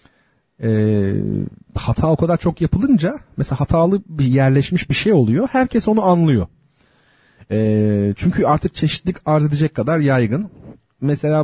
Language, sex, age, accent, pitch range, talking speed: Turkish, male, 40-59, native, 120-180 Hz, 130 wpm